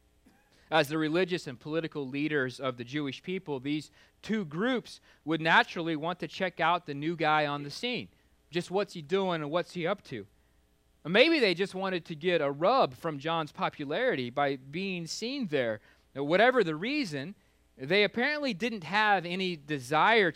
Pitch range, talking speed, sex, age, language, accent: 160-220 Hz, 170 wpm, male, 30-49, English, American